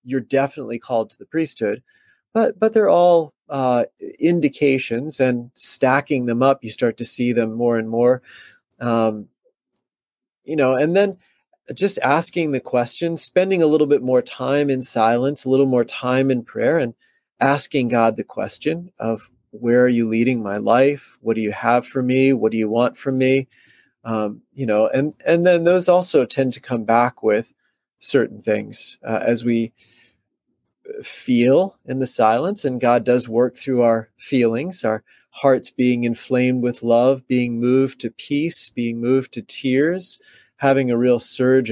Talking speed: 170 wpm